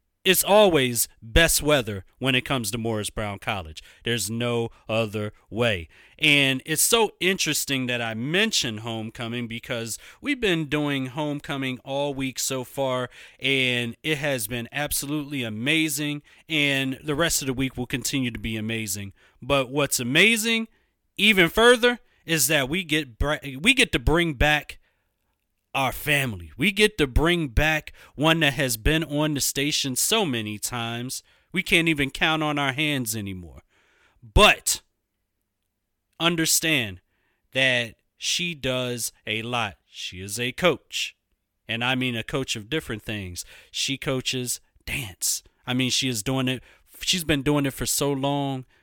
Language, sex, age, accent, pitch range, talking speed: English, male, 30-49, American, 115-150 Hz, 150 wpm